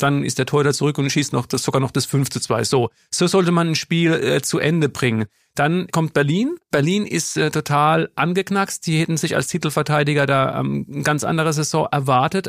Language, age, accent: German, 40-59, German